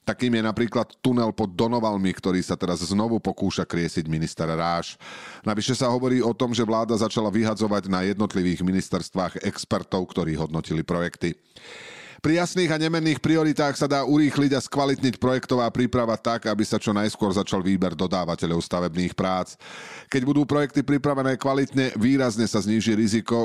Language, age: Slovak, 40-59